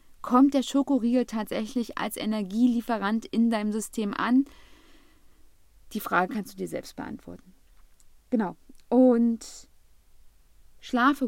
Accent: German